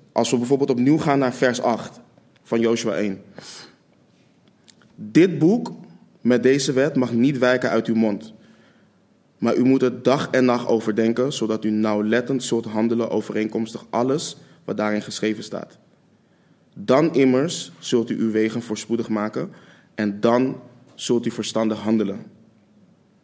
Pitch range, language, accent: 110-135 Hz, Dutch, Dutch